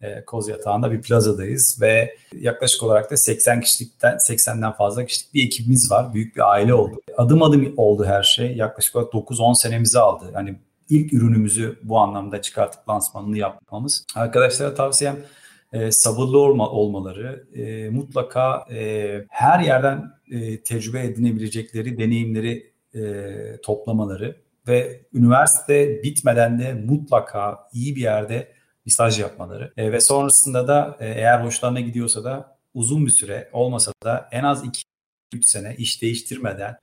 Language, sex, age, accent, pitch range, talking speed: Turkish, male, 40-59, native, 110-135 Hz, 130 wpm